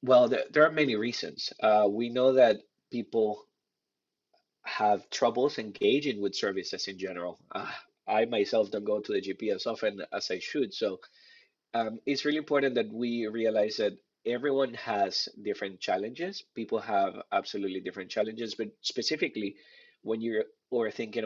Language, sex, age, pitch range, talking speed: English, male, 20-39, 110-175 Hz, 150 wpm